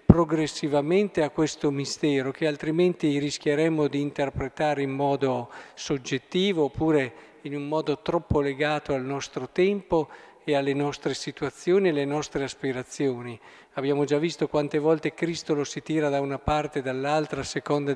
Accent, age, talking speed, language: native, 50-69, 150 wpm, Italian